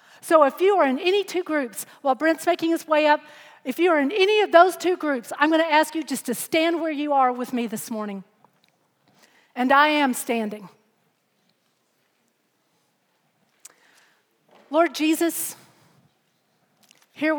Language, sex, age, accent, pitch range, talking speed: English, female, 40-59, American, 240-315 Hz, 155 wpm